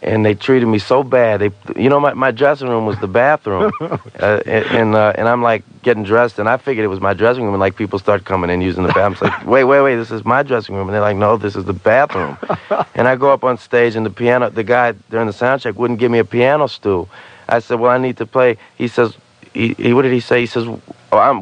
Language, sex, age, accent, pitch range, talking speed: English, male, 40-59, American, 105-125 Hz, 275 wpm